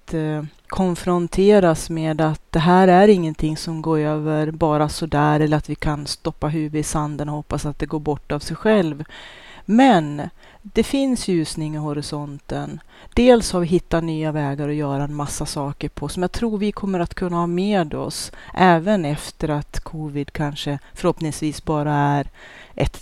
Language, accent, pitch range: Swedish, native, 155-190 Hz